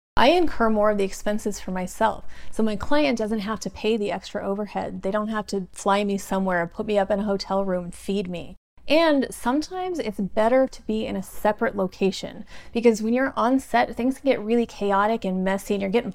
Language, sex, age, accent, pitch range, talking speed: English, female, 30-49, American, 195-235 Hz, 220 wpm